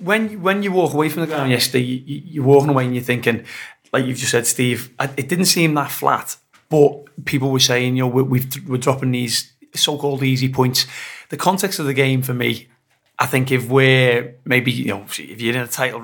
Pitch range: 125-140 Hz